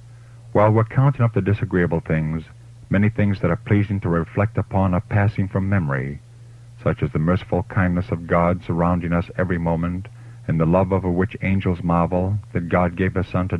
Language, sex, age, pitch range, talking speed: English, male, 50-69, 90-115 Hz, 190 wpm